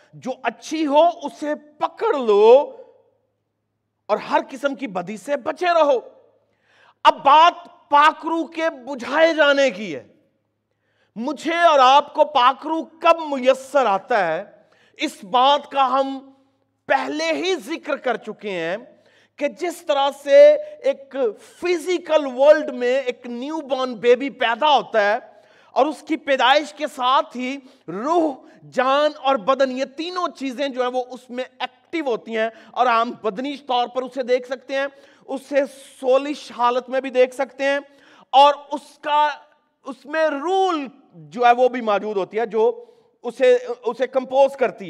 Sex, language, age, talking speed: male, Urdu, 40-59, 150 wpm